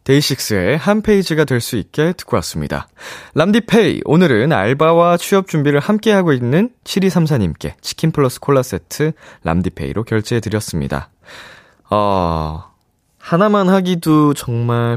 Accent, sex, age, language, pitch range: native, male, 20-39, Korean, 100-150 Hz